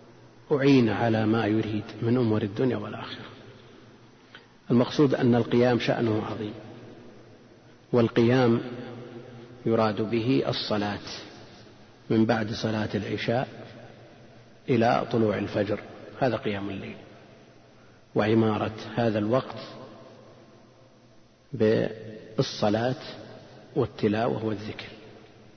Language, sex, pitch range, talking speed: Arabic, male, 110-125 Hz, 75 wpm